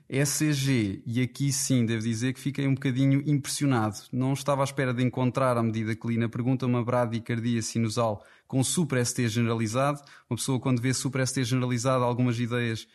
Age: 20-39